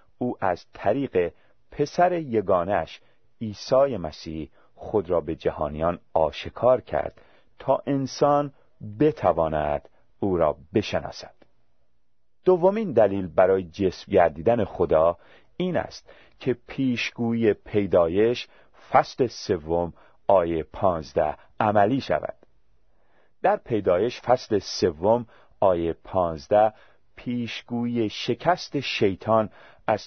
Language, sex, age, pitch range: Persian, male, 40-59, 95-130 Hz